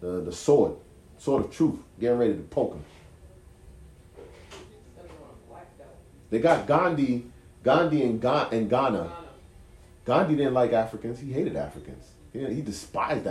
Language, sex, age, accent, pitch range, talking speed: English, male, 30-49, American, 90-125 Hz, 125 wpm